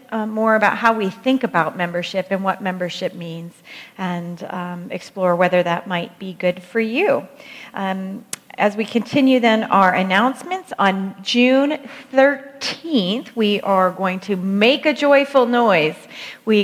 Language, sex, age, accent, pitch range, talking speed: English, female, 40-59, American, 190-245 Hz, 150 wpm